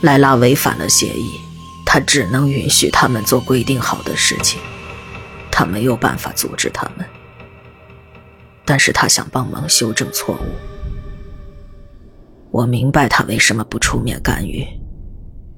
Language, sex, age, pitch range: Chinese, female, 20-39, 90-140 Hz